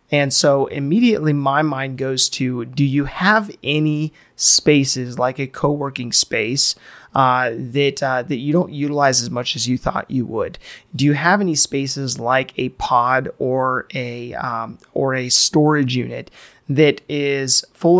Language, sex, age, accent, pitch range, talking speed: English, male, 30-49, American, 130-150 Hz, 160 wpm